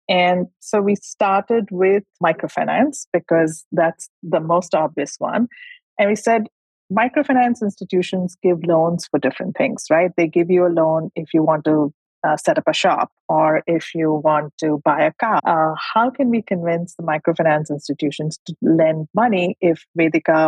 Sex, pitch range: female, 160-220 Hz